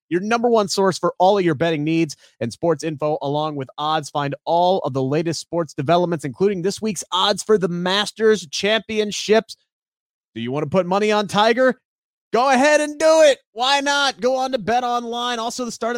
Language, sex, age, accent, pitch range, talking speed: English, male, 30-49, American, 155-210 Hz, 205 wpm